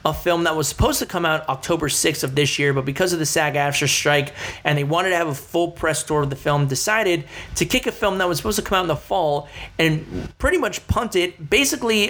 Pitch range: 140-175 Hz